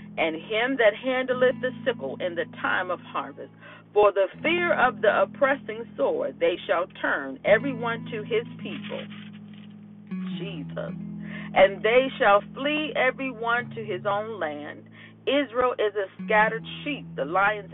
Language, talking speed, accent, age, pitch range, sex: English, 145 wpm, American, 40-59, 160-235 Hz, female